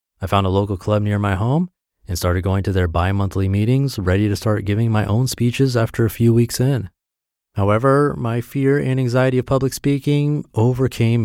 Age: 30-49